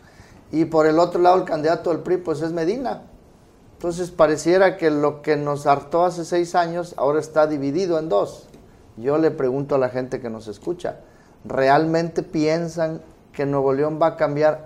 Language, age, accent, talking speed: Spanish, 40-59, Mexican, 180 wpm